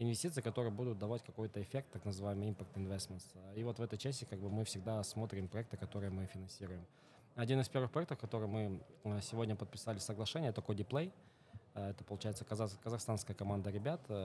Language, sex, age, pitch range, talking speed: Russian, male, 20-39, 100-115 Hz, 170 wpm